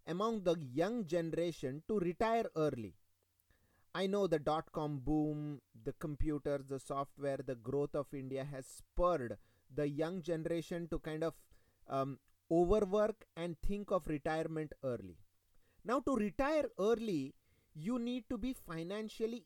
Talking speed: 135 wpm